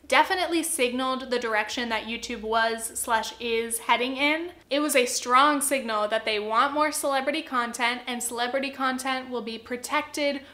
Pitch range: 230-275 Hz